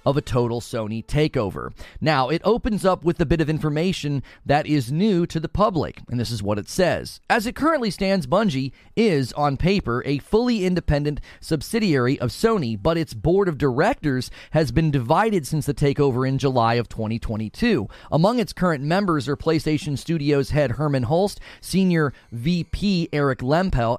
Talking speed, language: 175 wpm, English